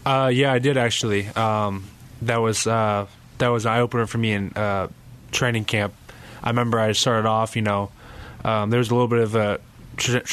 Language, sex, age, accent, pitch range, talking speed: English, male, 20-39, American, 100-115 Hz, 205 wpm